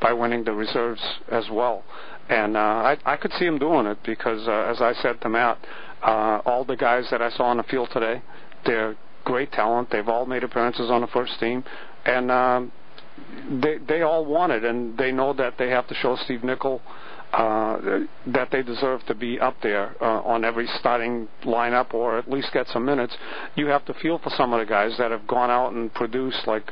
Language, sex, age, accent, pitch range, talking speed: English, male, 50-69, American, 115-135 Hz, 215 wpm